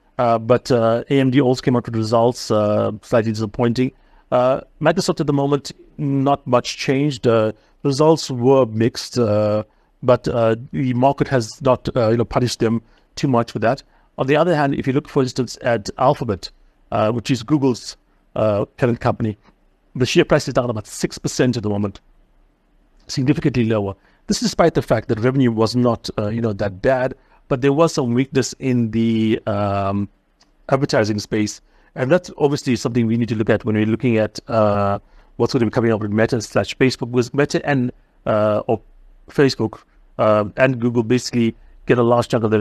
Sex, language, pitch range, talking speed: male, English, 110-135 Hz, 190 wpm